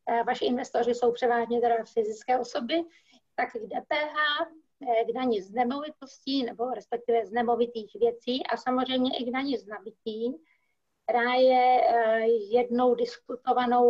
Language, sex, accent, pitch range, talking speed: Czech, female, native, 235-255 Hz, 130 wpm